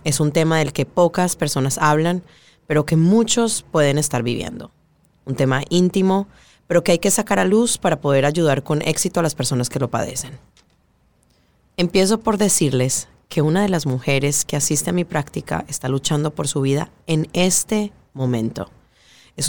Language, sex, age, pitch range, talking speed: English, female, 30-49, 140-180 Hz, 175 wpm